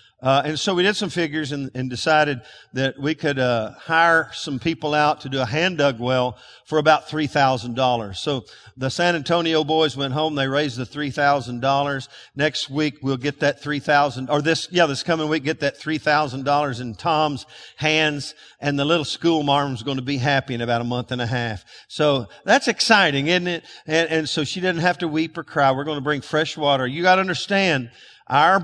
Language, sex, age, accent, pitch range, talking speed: English, male, 50-69, American, 130-165 Hz, 205 wpm